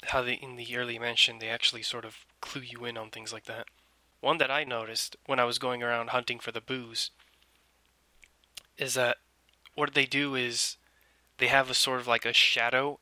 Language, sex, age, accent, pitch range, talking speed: English, male, 20-39, American, 110-130 Hz, 200 wpm